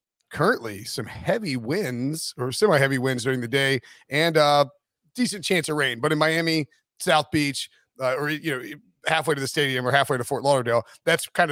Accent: American